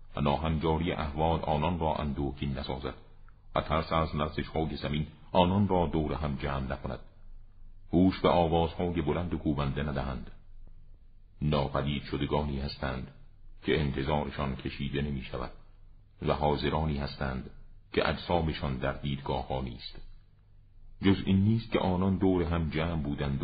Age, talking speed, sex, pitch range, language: 50-69, 125 wpm, male, 70-90 Hz, Persian